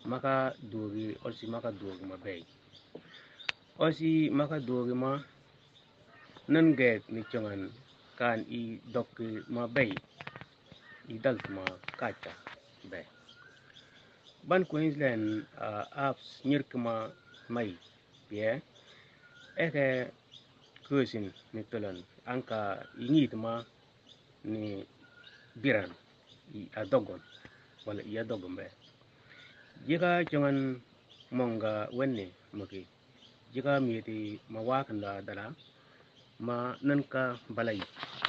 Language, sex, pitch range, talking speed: English, male, 115-135 Hz, 90 wpm